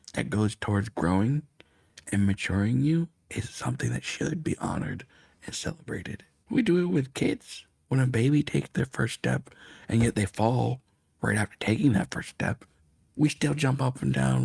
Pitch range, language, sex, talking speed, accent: 95-135 Hz, English, male, 180 wpm, American